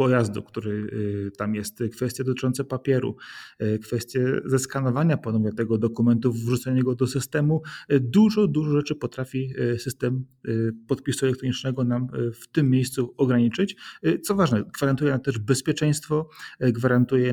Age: 30-49